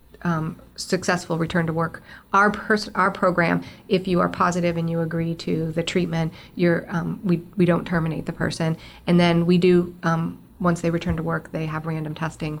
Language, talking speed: English, 195 wpm